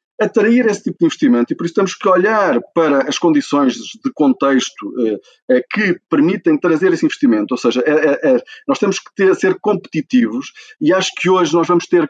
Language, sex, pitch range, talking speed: Portuguese, male, 180-260 Hz, 185 wpm